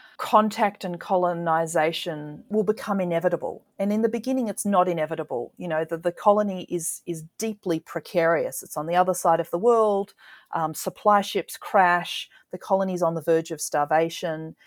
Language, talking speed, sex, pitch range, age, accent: English, 170 wpm, female, 160-195 Hz, 30-49, Australian